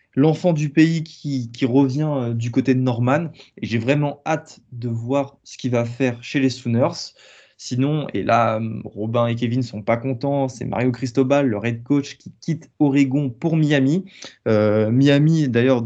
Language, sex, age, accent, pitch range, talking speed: French, male, 20-39, French, 115-140 Hz, 175 wpm